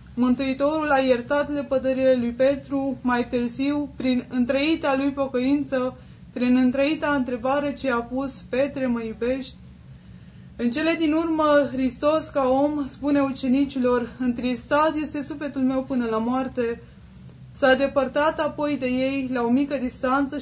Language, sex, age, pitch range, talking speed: Romanian, female, 20-39, 250-285 Hz, 135 wpm